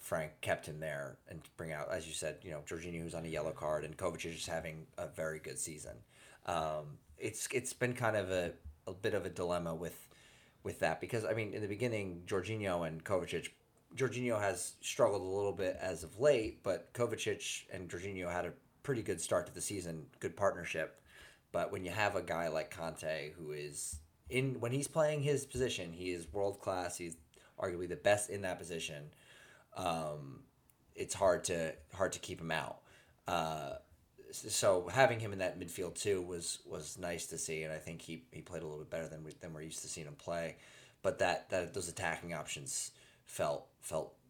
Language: English